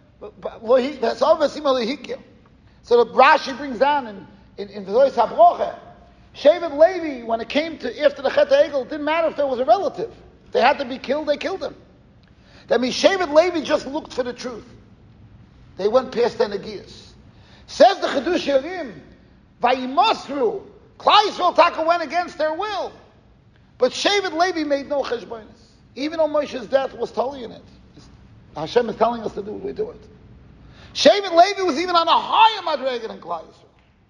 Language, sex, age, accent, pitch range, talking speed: English, male, 40-59, American, 250-335 Hz, 175 wpm